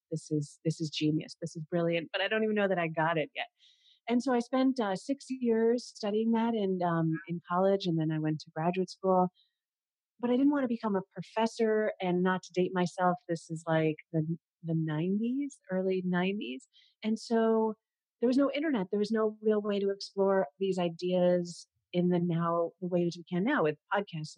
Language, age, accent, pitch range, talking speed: English, 30-49, American, 170-230 Hz, 210 wpm